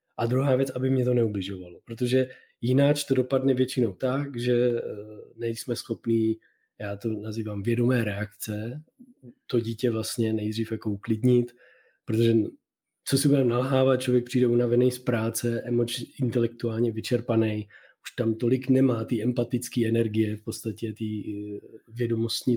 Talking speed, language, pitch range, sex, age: 135 wpm, Czech, 110-130 Hz, male, 20-39